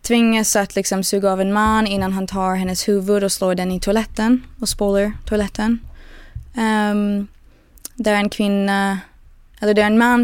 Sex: female